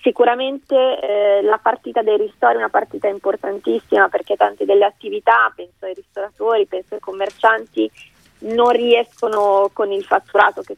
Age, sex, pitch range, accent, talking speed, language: 20-39, female, 190-230 Hz, native, 145 wpm, Italian